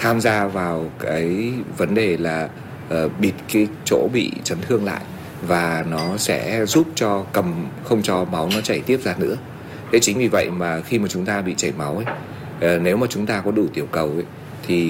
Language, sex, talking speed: Vietnamese, male, 205 wpm